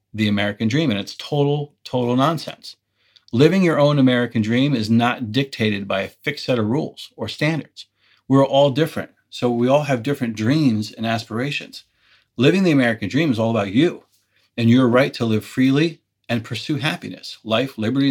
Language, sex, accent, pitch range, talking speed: English, male, American, 115-145 Hz, 180 wpm